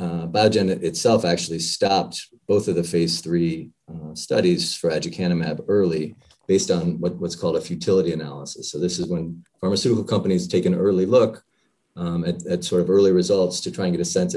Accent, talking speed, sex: American, 190 wpm, male